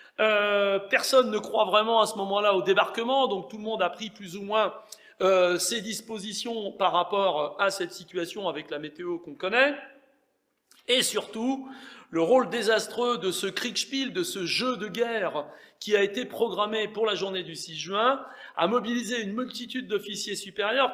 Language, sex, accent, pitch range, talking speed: French, male, French, 190-245 Hz, 180 wpm